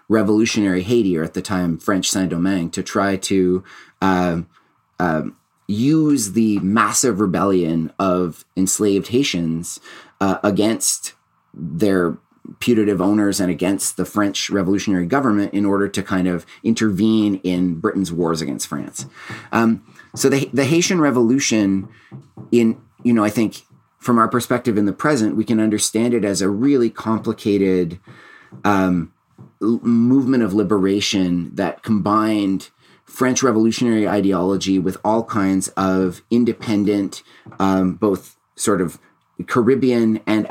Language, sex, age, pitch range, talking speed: English, male, 30-49, 95-115 Hz, 130 wpm